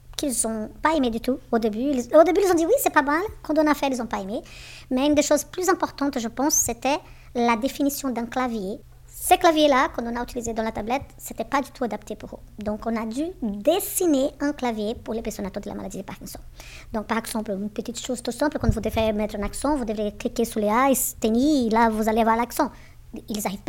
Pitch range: 220-285 Hz